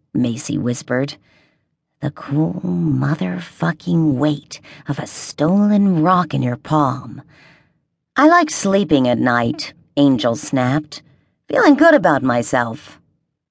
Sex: female